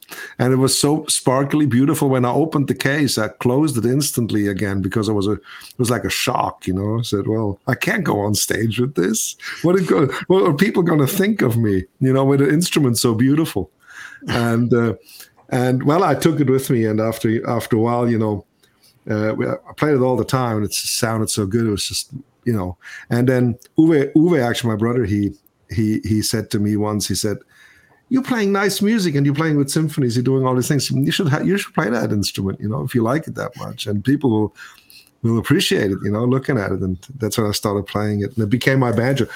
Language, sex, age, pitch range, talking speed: English, male, 50-69, 110-140 Hz, 235 wpm